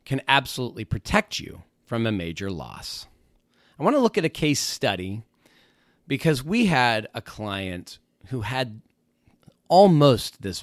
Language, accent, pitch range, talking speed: English, American, 100-155 Hz, 140 wpm